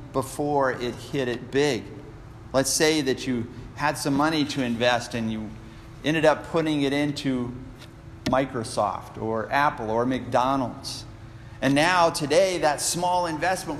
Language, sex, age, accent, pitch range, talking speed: English, male, 50-69, American, 115-155 Hz, 140 wpm